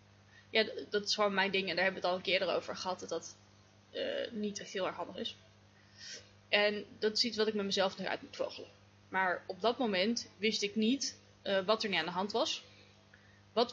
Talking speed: 230 wpm